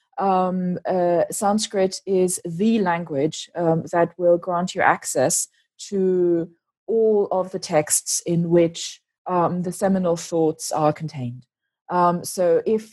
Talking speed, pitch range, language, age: 130 wpm, 175-225 Hz, English, 20-39